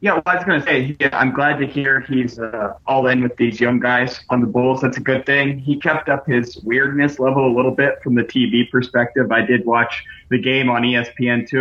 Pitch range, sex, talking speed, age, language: 120-140 Hz, male, 245 wpm, 30-49, English